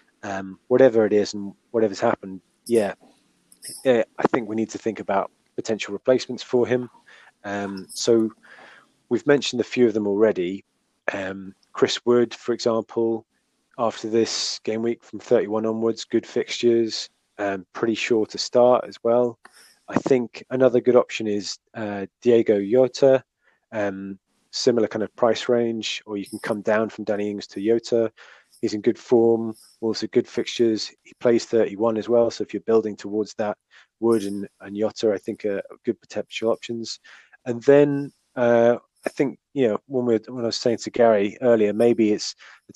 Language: English